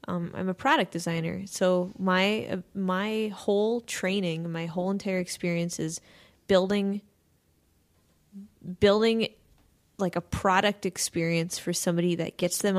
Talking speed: 130 wpm